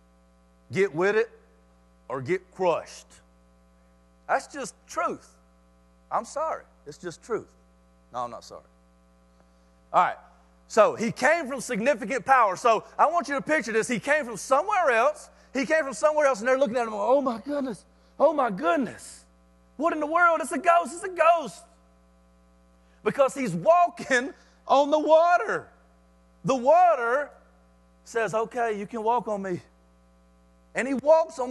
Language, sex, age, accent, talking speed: English, male, 40-59, American, 160 wpm